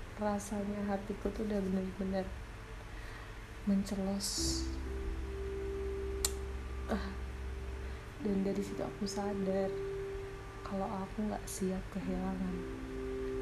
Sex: female